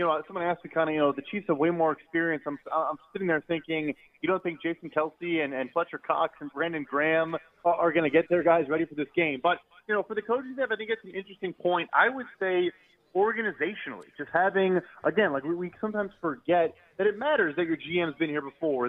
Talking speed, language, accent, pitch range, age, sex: 240 wpm, English, American, 155-180 Hz, 30-49, male